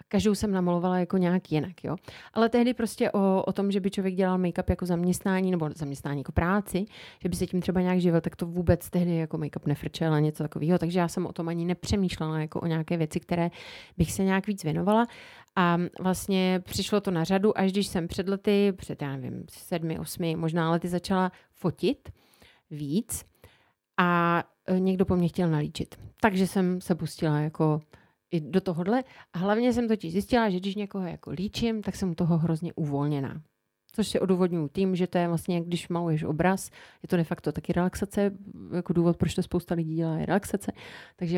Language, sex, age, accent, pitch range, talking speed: Czech, female, 30-49, native, 165-185 Hz, 195 wpm